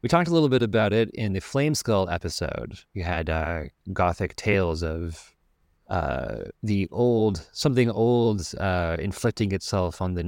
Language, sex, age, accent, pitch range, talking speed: English, male, 30-49, American, 85-110 Hz, 165 wpm